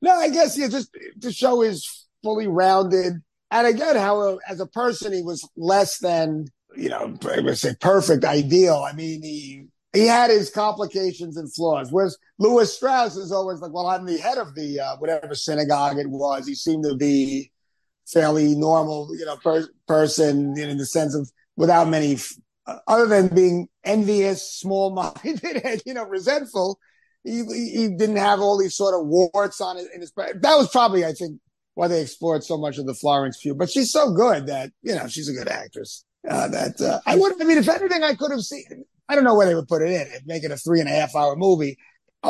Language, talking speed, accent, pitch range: English, 215 wpm, American, 155-215 Hz